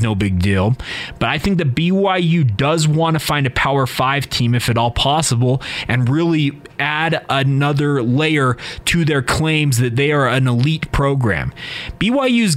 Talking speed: 165 wpm